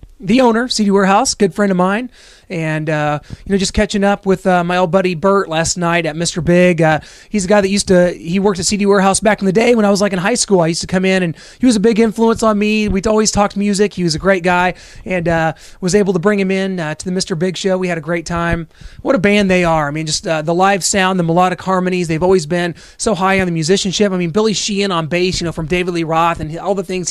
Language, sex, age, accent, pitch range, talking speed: English, male, 30-49, American, 175-205 Hz, 285 wpm